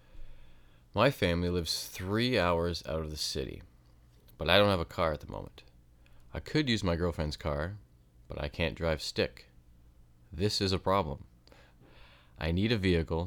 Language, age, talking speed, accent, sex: English, 30-49, 165 wpm, American, male